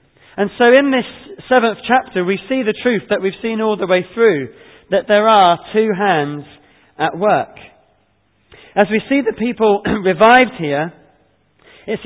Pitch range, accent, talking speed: 150-205 Hz, British, 160 wpm